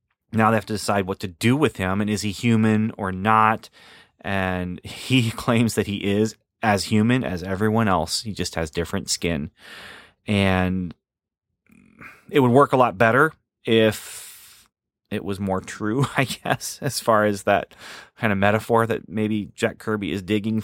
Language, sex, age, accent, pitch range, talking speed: English, male, 30-49, American, 95-115 Hz, 170 wpm